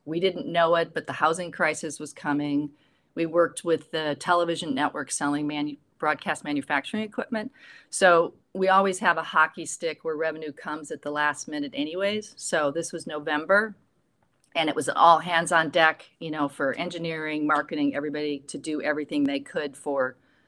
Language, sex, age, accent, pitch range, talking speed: English, female, 40-59, American, 150-180 Hz, 175 wpm